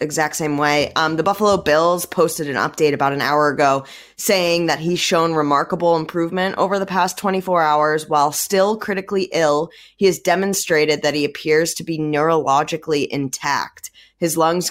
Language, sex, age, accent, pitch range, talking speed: English, female, 10-29, American, 145-180 Hz, 165 wpm